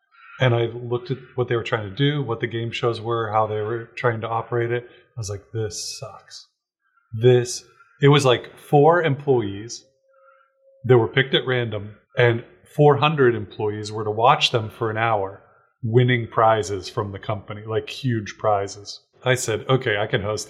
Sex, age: male, 20-39